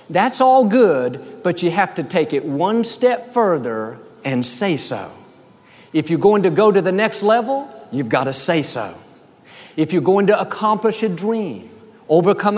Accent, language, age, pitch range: American, English, 50-69, 145-215 Hz